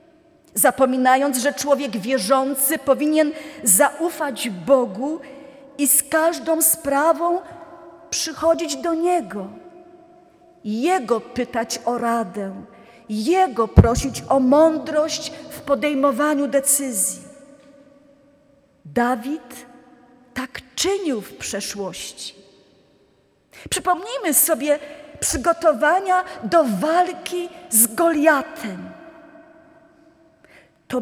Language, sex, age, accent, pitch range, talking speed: Polish, female, 40-59, native, 255-320 Hz, 75 wpm